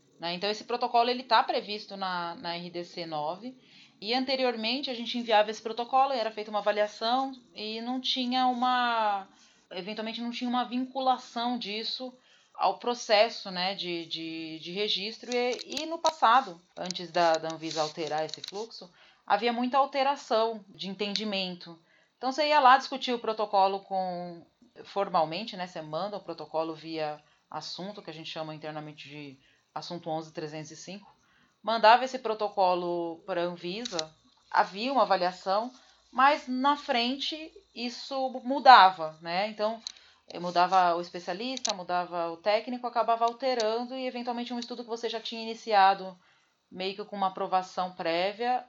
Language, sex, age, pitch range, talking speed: Portuguese, female, 30-49, 180-240 Hz, 140 wpm